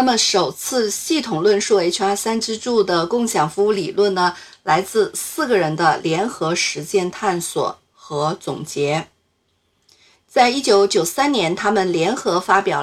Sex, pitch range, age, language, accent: female, 180-255 Hz, 50-69, Chinese, native